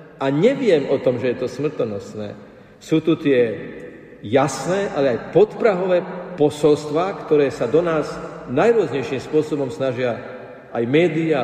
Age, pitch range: 50-69, 135-165 Hz